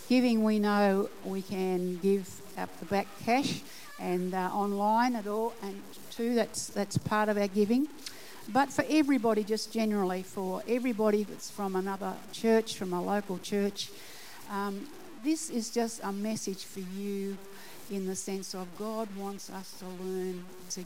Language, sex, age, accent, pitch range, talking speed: English, female, 60-79, Australian, 200-240 Hz, 160 wpm